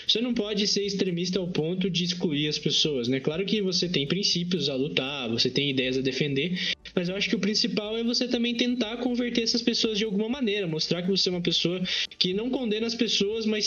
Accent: Brazilian